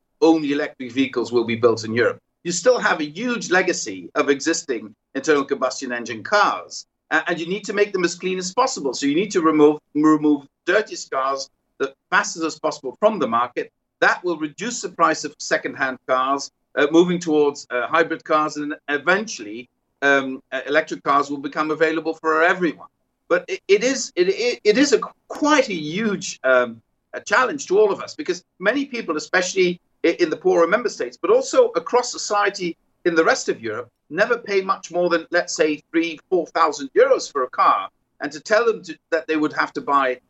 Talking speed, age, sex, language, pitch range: 195 wpm, 50-69, male, English, 145-220 Hz